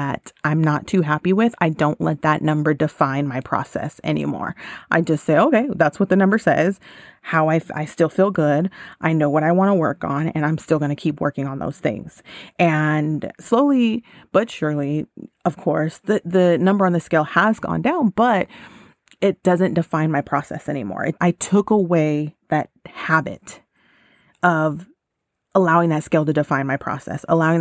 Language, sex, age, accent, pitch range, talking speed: English, female, 30-49, American, 150-175 Hz, 180 wpm